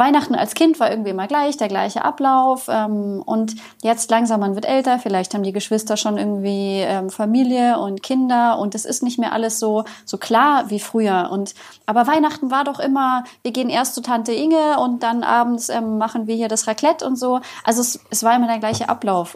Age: 30-49